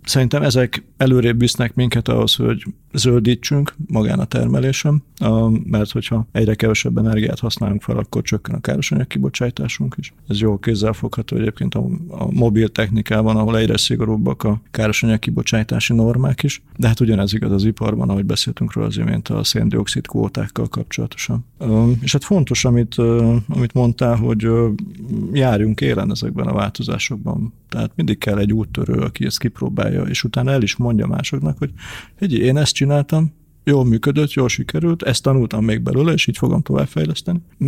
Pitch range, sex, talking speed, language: 110-135 Hz, male, 150 wpm, Hungarian